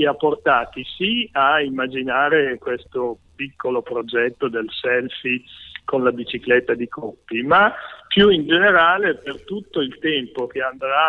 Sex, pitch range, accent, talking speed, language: male, 120-175 Hz, native, 135 wpm, Italian